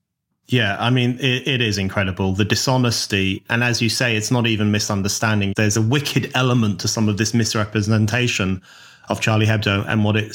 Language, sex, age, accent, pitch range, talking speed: English, male, 30-49, British, 110-125 Hz, 185 wpm